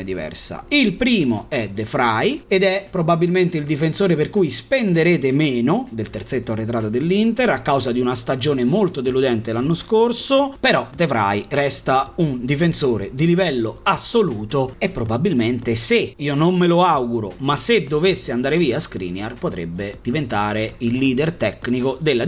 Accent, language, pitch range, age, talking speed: native, Italian, 130-210 Hz, 30-49, 150 wpm